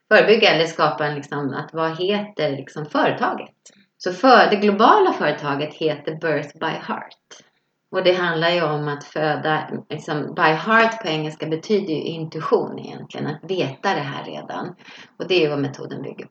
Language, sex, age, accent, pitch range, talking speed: Swedish, female, 30-49, native, 145-170 Hz, 175 wpm